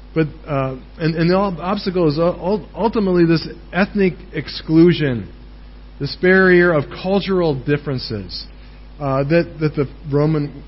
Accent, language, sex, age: American, English, male, 40-59